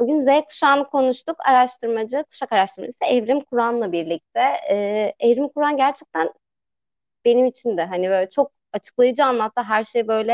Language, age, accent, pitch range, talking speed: Turkish, 30-49, native, 195-260 Hz, 145 wpm